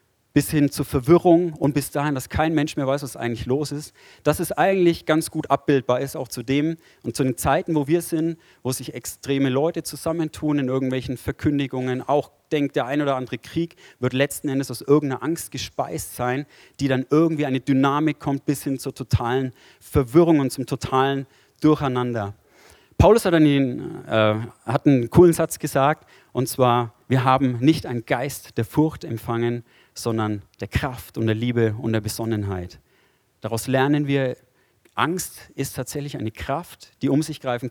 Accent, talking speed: German, 175 wpm